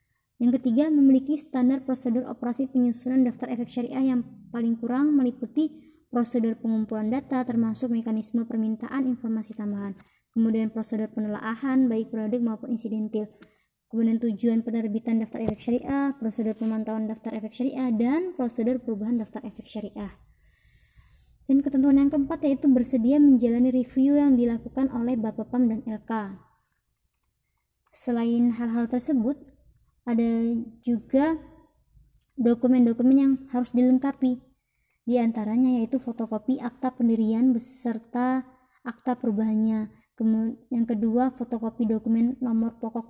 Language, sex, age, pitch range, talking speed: Indonesian, male, 20-39, 220-255 Hz, 120 wpm